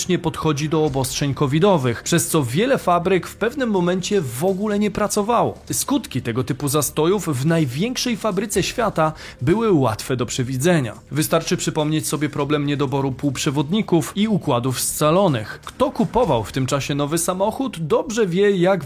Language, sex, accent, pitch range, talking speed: Polish, male, native, 145-195 Hz, 145 wpm